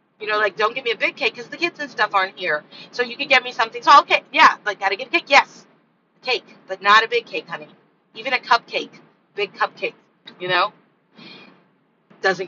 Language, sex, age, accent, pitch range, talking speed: English, female, 30-49, American, 185-265 Hz, 225 wpm